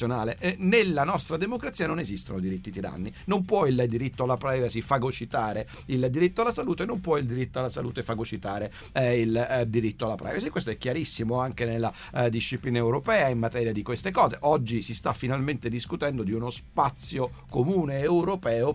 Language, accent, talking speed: Italian, native, 180 wpm